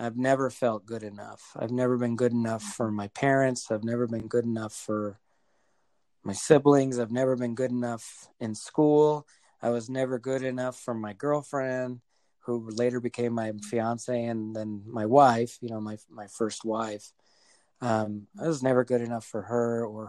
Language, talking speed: English, 180 wpm